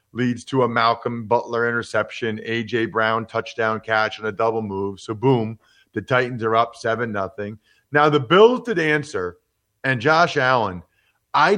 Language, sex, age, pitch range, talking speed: English, male, 40-59, 110-140 Hz, 155 wpm